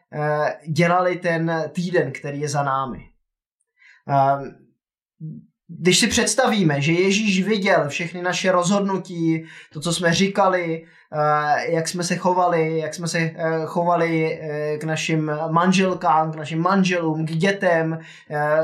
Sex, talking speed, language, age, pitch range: male, 115 wpm, Czech, 20-39, 160-195 Hz